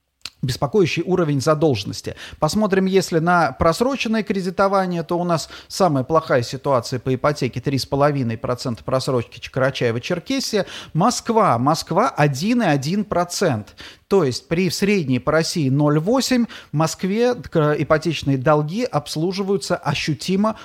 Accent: native